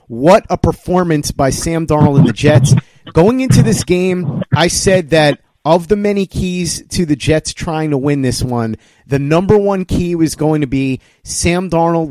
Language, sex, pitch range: English, male, 135-165 Hz